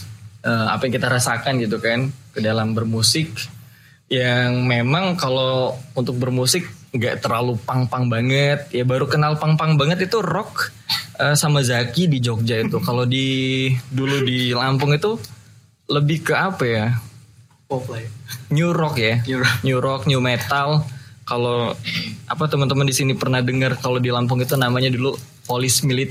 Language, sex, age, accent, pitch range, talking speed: Indonesian, male, 20-39, native, 120-145 Hz, 145 wpm